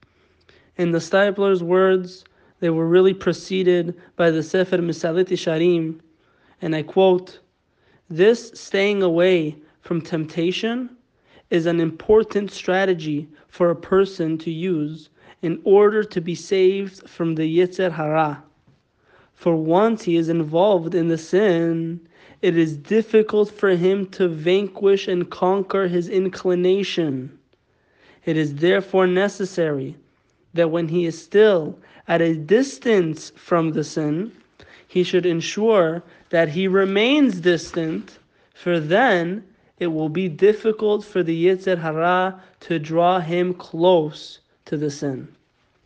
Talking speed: 125 wpm